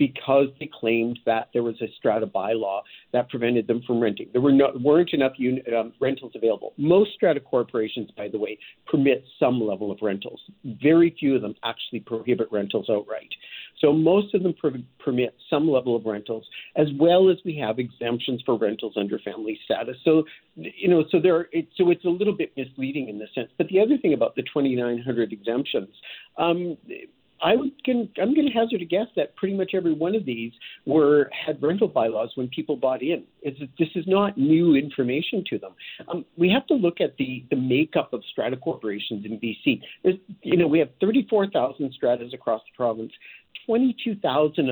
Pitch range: 120-175 Hz